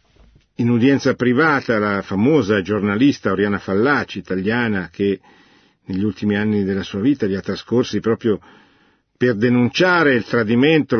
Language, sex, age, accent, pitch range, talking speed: Italian, male, 50-69, native, 100-135 Hz, 130 wpm